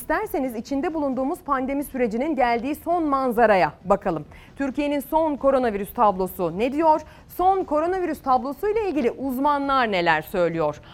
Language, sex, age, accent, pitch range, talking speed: Turkish, female, 30-49, native, 210-305 Hz, 125 wpm